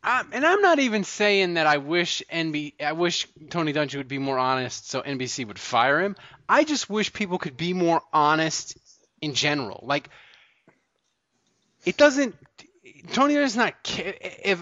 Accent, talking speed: American, 170 wpm